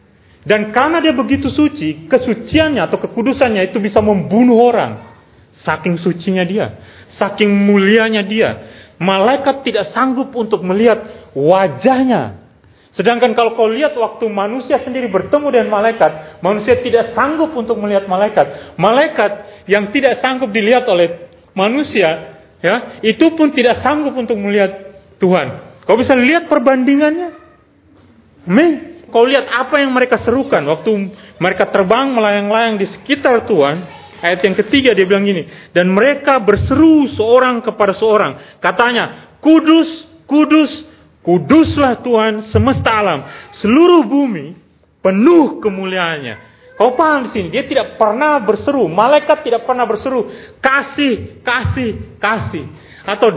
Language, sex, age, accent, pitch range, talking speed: Indonesian, male, 30-49, native, 200-275 Hz, 125 wpm